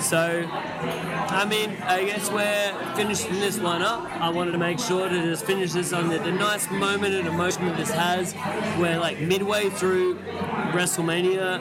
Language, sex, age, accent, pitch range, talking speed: English, male, 20-39, Australian, 165-195 Hz, 170 wpm